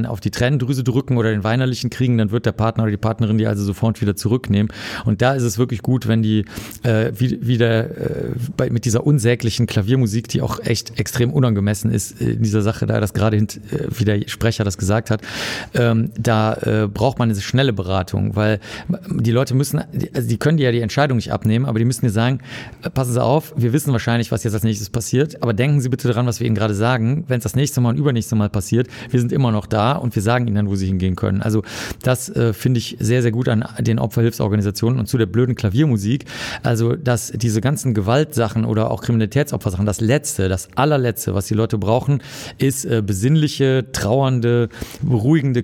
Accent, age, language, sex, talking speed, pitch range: German, 40-59, German, male, 210 wpm, 110-125 Hz